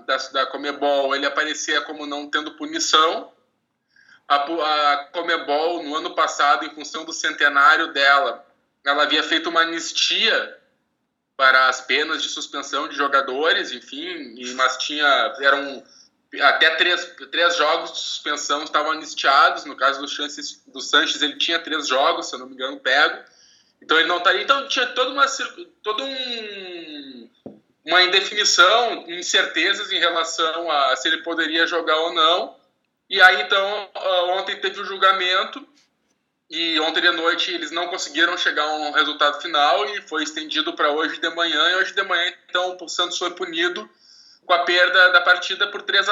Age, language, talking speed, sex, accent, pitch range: 10-29, Portuguese, 165 wpm, male, Brazilian, 155-200 Hz